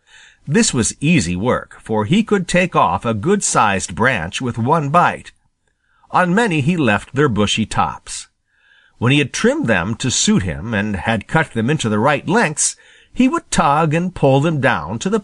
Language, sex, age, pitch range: Japanese, male, 50-69, 110-170 Hz